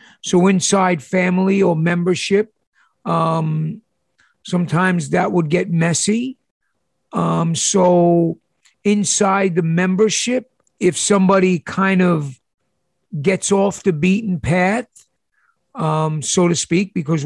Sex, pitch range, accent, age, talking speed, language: male, 165-200 Hz, American, 50-69, 105 wpm, English